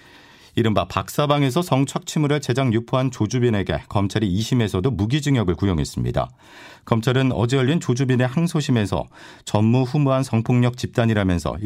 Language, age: Korean, 40-59